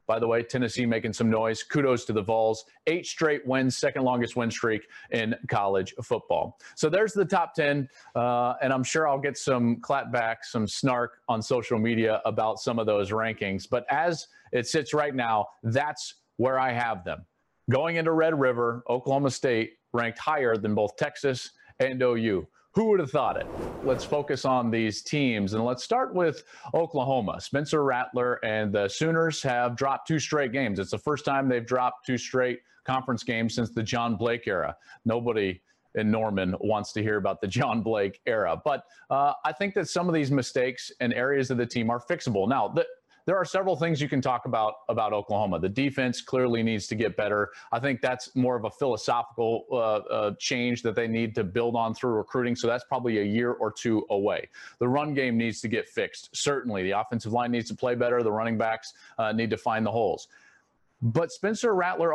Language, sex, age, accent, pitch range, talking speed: English, male, 40-59, American, 115-140 Hz, 200 wpm